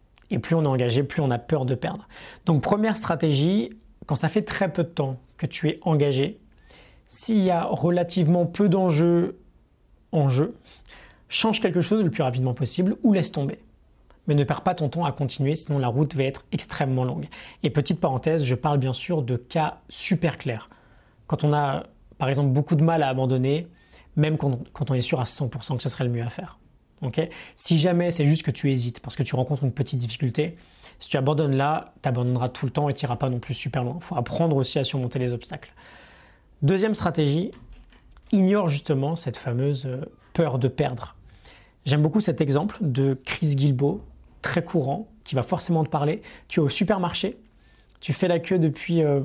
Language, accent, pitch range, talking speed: French, French, 135-170 Hz, 200 wpm